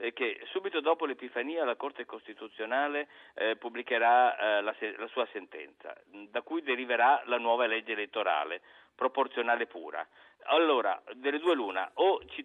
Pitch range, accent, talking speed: 105-145 Hz, native, 140 wpm